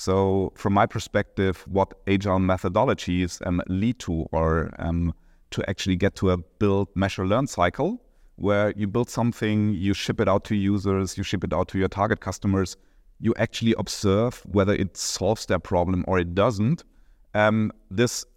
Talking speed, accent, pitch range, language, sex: 170 wpm, German, 90-100 Hz, English, male